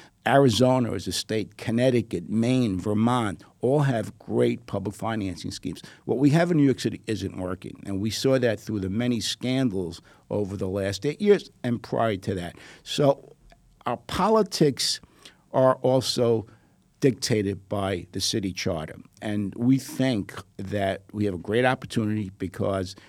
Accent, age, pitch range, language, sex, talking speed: American, 50-69, 100-130 Hz, English, male, 155 wpm